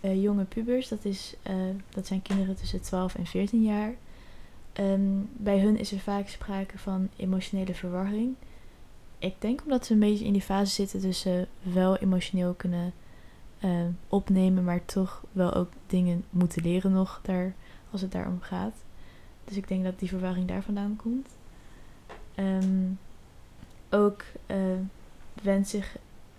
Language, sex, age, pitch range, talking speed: Dutch, female, 20-39, 180-200 Hz, 155 wpm